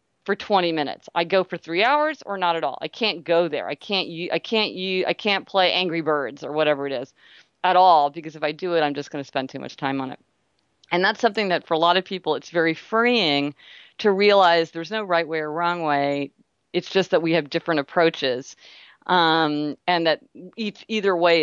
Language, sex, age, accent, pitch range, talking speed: English, female, 40-59, American, 150-190 Hz, 225 wpm